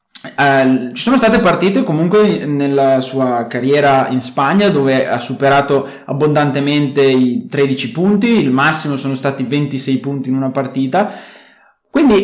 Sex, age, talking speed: male, 20-39, 130 wpm